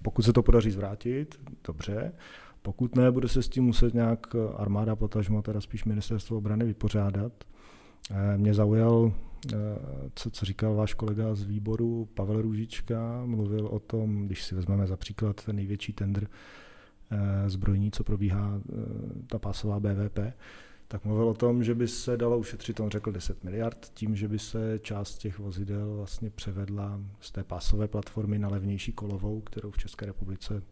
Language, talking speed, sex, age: Czech, 160 wpm, male, 40-59